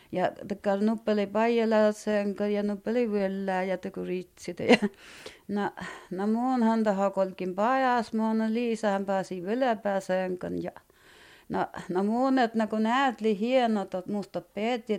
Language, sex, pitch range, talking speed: Finnish, female, 205-295 Hz, 130 wpm